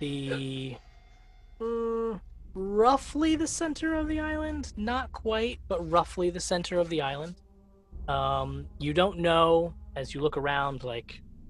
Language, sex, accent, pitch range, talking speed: English, male, American, 105-140 Hz, 135 wpm